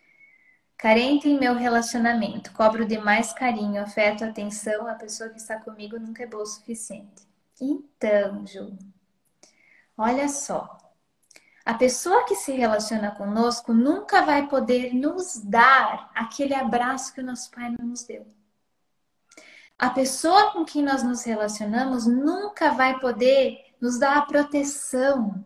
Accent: Brazilian